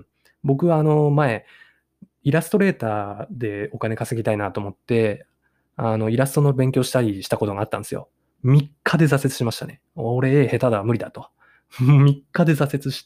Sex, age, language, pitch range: male, 20-39, Japanese, 110-150 Hz